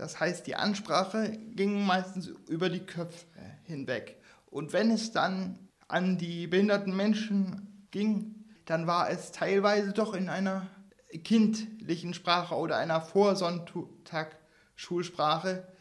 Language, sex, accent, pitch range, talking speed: German, male, German, 170-200 Hz, 120 wpm